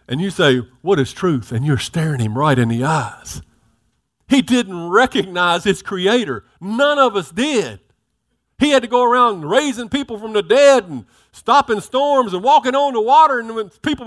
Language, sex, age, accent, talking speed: English, male, 50-69, American, 190 wpm